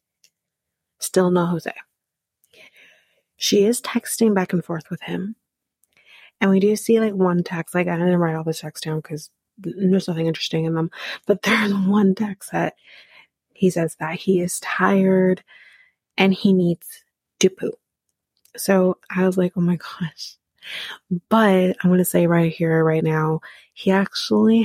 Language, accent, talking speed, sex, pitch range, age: English, American, 160 wpm, female, 170-195 Hz, 30-49